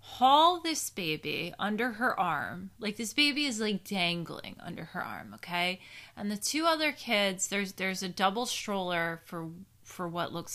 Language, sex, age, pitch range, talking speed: English, female, 20-39, 175-270 Hz, 170 wpm